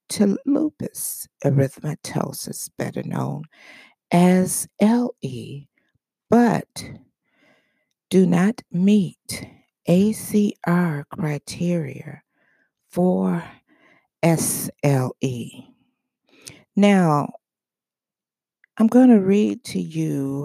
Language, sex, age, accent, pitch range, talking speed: English, female, 50-69, American, 150-210 Hz, 65 wpm